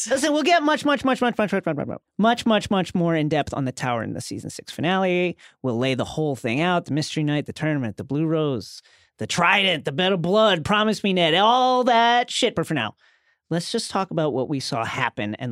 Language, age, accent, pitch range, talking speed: English, 40-59, American, 140-215 Hz, 240 wpm